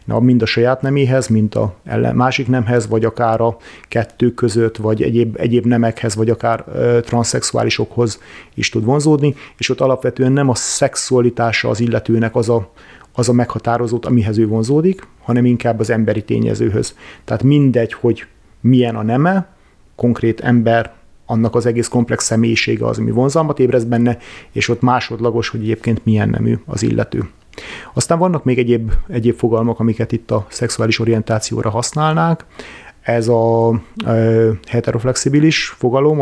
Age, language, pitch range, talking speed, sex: 30-49, Hungarian, 115-125 Hz, 145 wpm, male